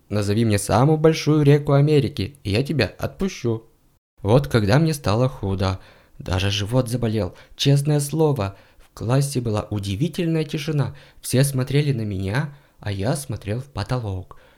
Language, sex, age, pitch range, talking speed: Russian, male, 20-39, 110-155 Hz, 140 wpm